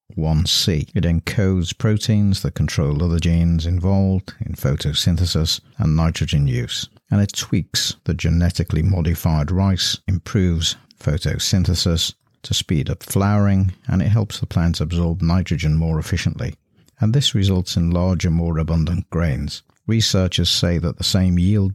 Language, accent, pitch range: English, British, 80-100 Hz